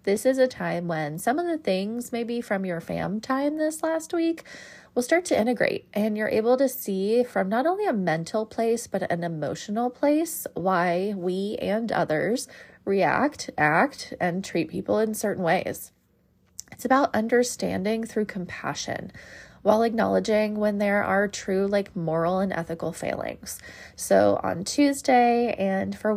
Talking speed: 160 wpm